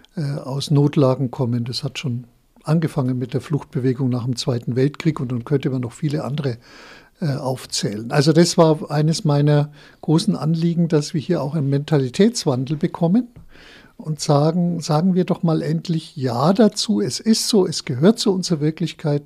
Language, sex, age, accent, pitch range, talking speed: German, male, 60-79, German, 130-165 Hz, 170 wpm